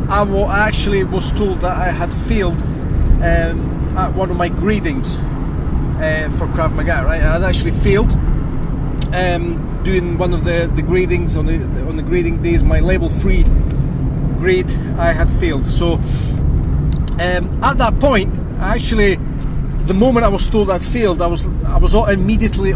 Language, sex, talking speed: English, male, 165 wpm